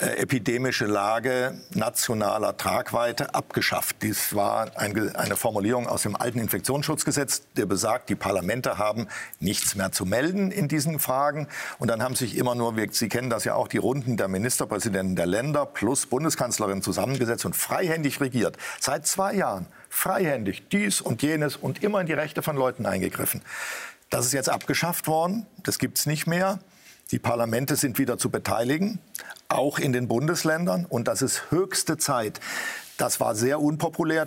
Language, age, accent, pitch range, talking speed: German, 50-69, German, 120-160 Hz, 160 wpm